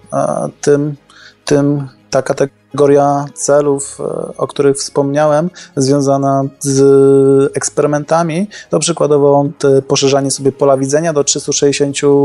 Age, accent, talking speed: 20-39, native, 100 wpm